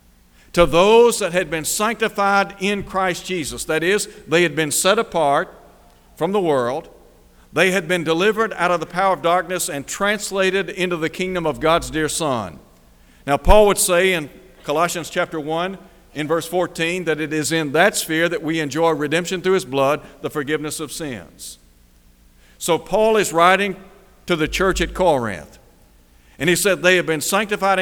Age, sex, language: 60-79, male, English